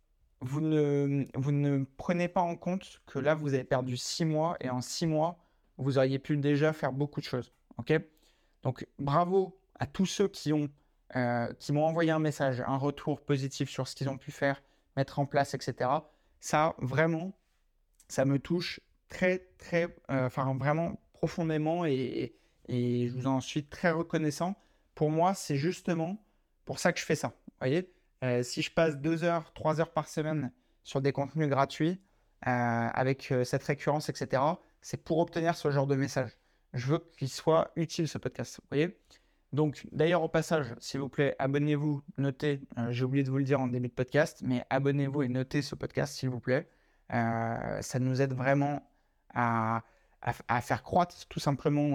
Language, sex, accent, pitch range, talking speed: French, male, French, 130-160 Hz, 190 wpm